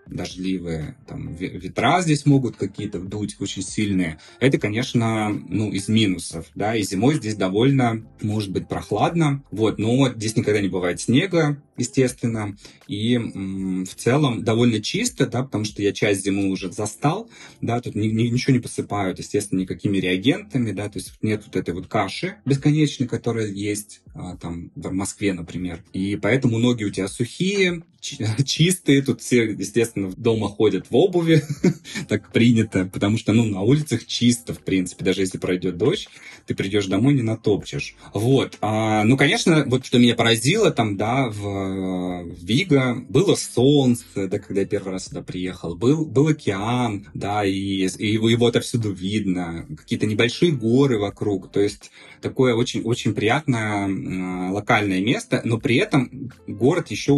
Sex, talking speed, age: male, 155 wpm, 20-39